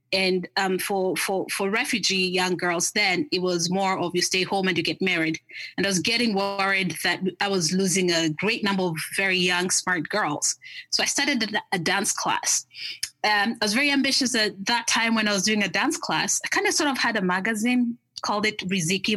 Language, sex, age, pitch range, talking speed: English, female, 20-39, 185-240 Hz, 215 wpm